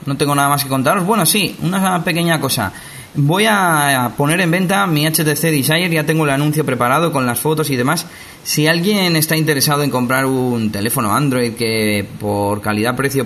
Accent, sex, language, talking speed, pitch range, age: Spanish, male, Spanish, 185 wpm, 120-160 Hz, 20-39